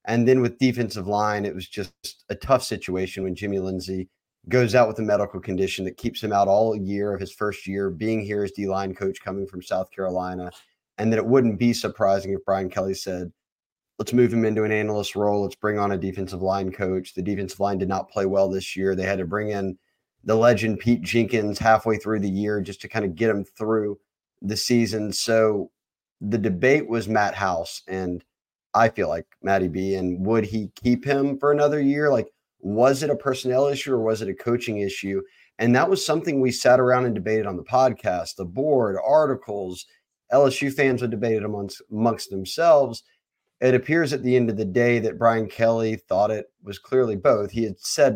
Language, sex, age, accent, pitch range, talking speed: English, male, 30-49, American, 95-120 Hz, 210 wpm